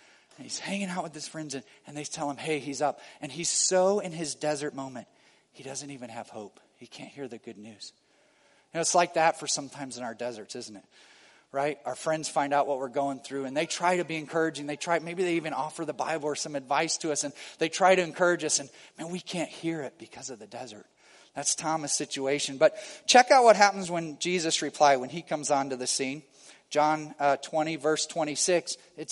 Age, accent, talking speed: 40-59, American, 230 wpm